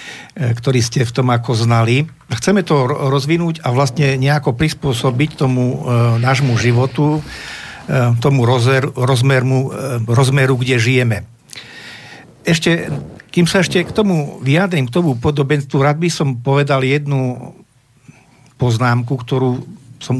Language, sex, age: Slovak, male, 50-69